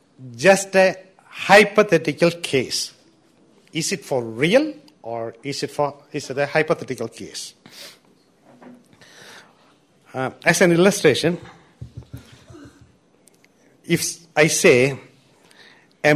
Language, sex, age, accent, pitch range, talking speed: English, male, 50-69, Indian, 140-195 Hz, 95 wpm